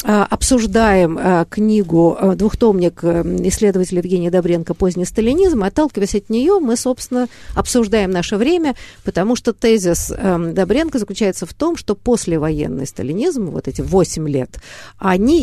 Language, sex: Russian, female